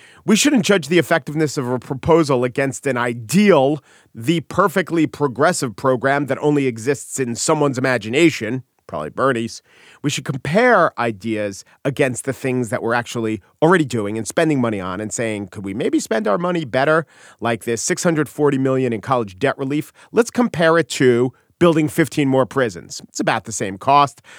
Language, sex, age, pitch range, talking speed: English, male, 40-59, 120-155 Hz, 170 wpm